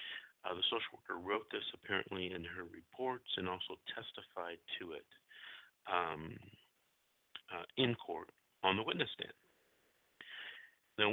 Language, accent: English, American